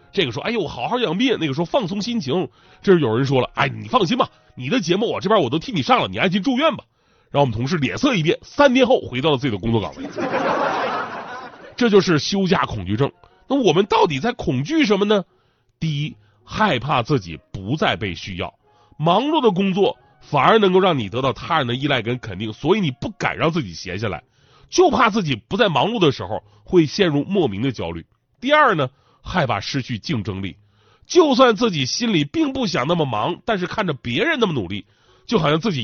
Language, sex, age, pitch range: Chinese, male, 30-49, 120-190 Hz